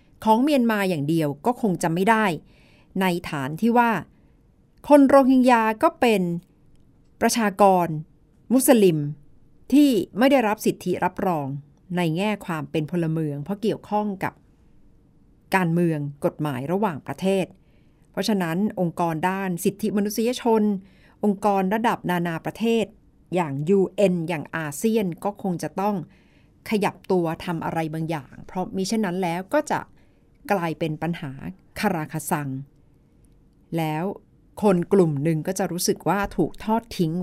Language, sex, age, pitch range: Thai, female, 60-79, 160-215 Hz